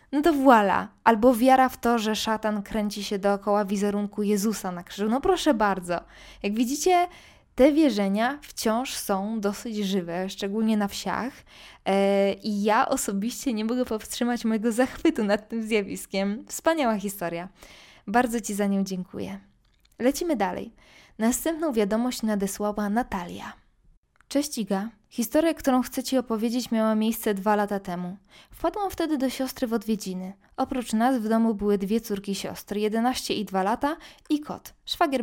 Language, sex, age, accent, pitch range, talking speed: Polish, female, 20-39, native, 205-255 Hz, 150 wpm